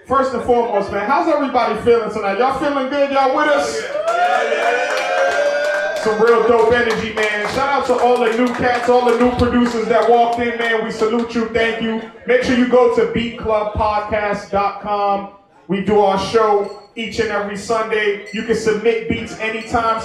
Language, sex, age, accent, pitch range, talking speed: English, male, 20-39, American, 205-235 Hz, 175 wpm